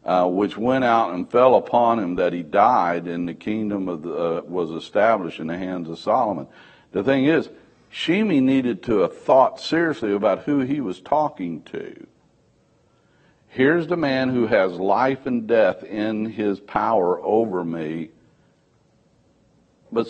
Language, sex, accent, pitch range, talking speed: English, male, American, 110-145 Hz, 160 wpm